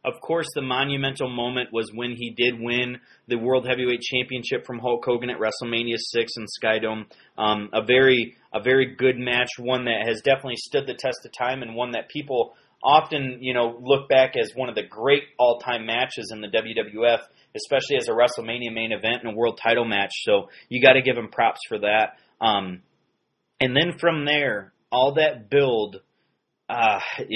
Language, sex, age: English, male, 30-49